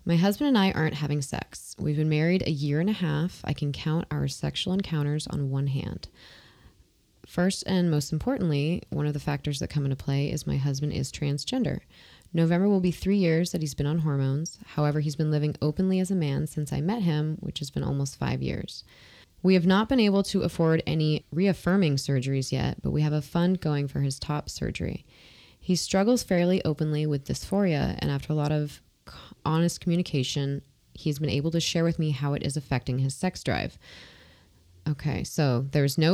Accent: American